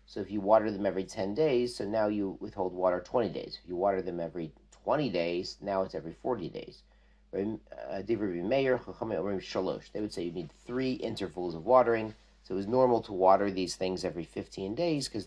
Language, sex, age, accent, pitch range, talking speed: English, male, 40-59, American, 95-115 Hz, 190 wpm